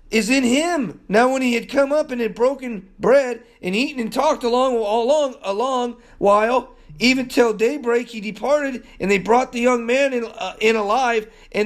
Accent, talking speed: American, 200 wpm